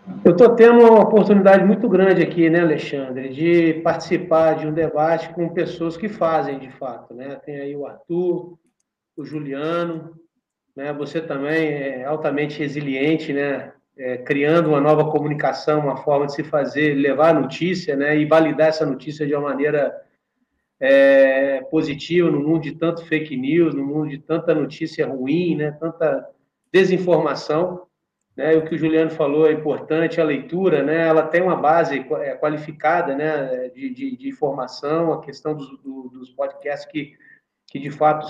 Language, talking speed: Portuguese, 165 wpm